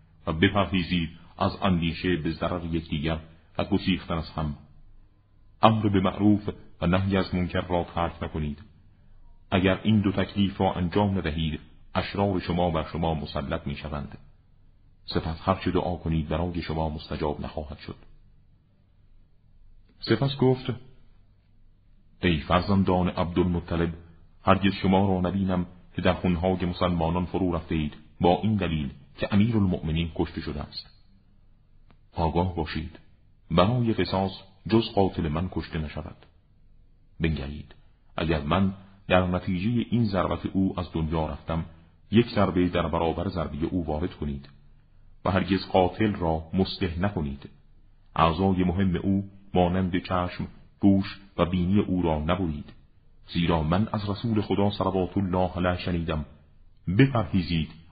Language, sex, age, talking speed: Persian, male, 40-59, 125 wpm